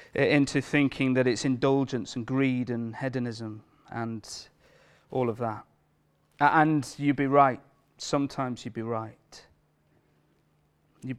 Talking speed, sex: 120 wpm, male